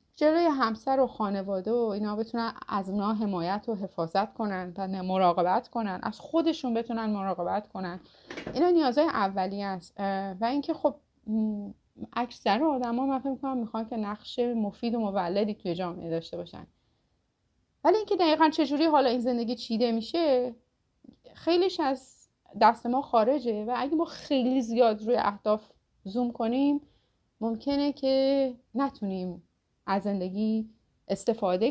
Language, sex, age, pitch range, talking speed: Persian, female, 30-49, 190-245 Hz, 135 wpm